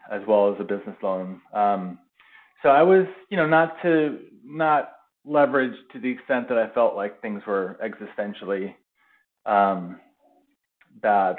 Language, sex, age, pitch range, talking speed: English, male, 30-49, 100-130 Hz, 150 wpm